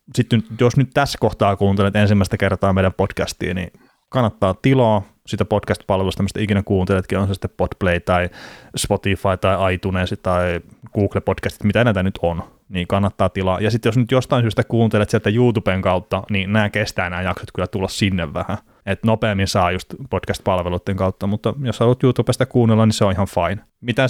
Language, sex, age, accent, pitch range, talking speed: Finnish, male, 20-39, native, 95-115 Hz, 175 wpm